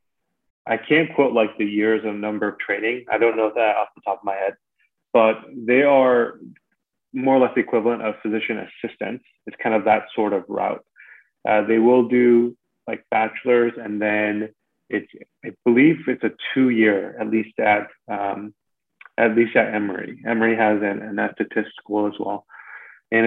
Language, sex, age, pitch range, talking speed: English, male, 30-49, 105-120 Hz, 180 wpm